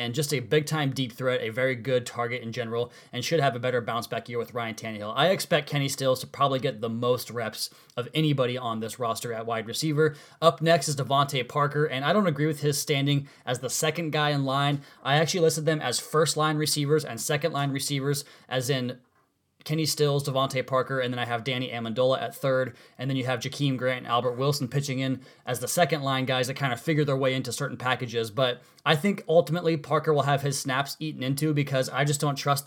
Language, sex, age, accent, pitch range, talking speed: English, male, 20-39, American, 130-150 Hz, 225 wpm